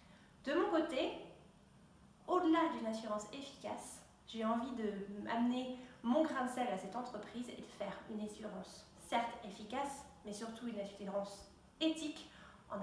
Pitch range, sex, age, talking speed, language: 210-275 Hz, female, 30-49, 145 wpm, French